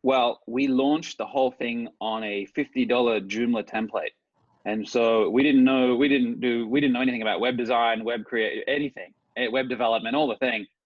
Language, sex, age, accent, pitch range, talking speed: English, male, 20-39, Australian, 125-155 Hz, 190 wpm